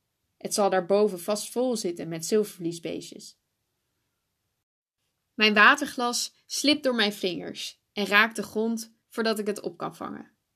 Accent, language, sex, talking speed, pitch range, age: Dutch, Dutch, female, 135 wpm, 200-245 Hz, 10-29